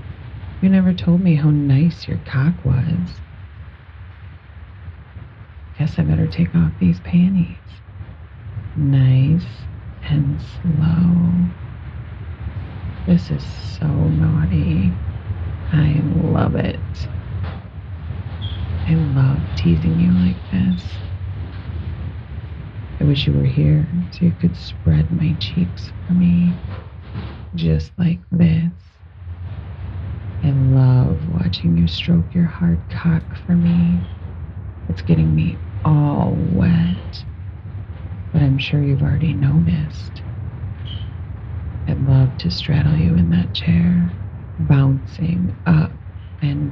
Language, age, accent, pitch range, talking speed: English, 40-59, American, 90-110 Hz, 100 wpm